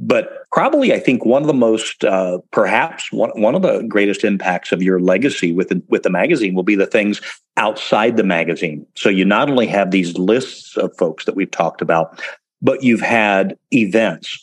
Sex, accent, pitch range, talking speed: male, American, 95-115 Hz, 200 wpm